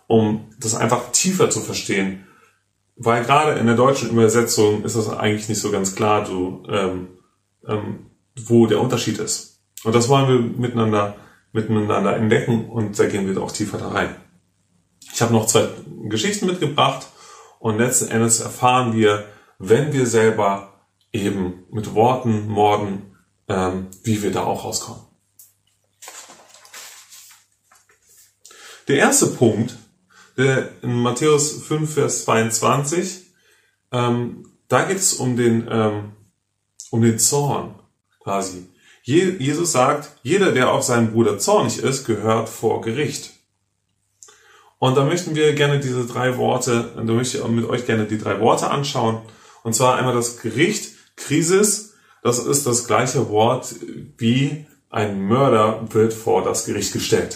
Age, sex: 30-49, male